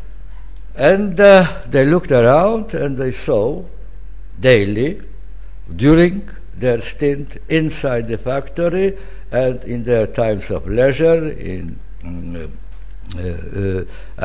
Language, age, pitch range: English, 60-79, 90-120 Hz